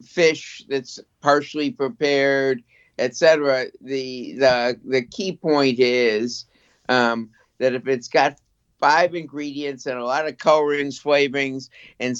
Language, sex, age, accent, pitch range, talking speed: English, male, 50-69, American, 120-145 Hz, 130 wpm